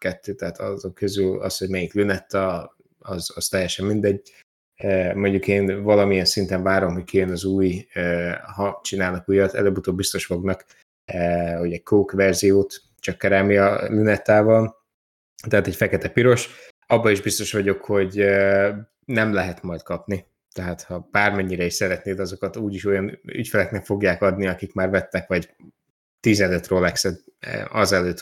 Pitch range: 95-105 Hz